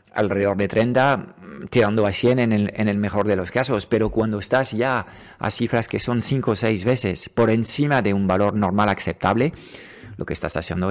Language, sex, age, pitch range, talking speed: Spanish, male, 50-69, 95-120 Hz, 205 wpm